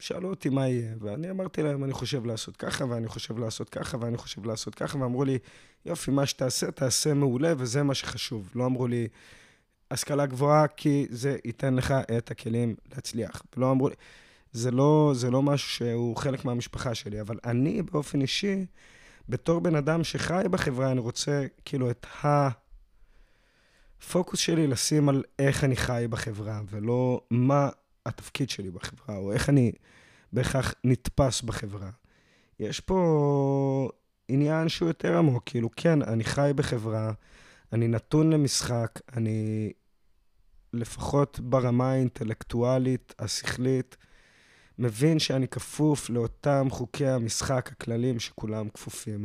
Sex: male